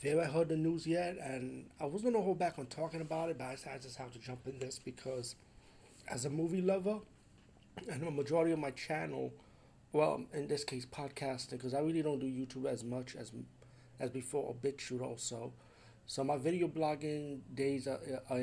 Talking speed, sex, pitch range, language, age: 200 wpm, male, 120-140 Hz, English, 30-49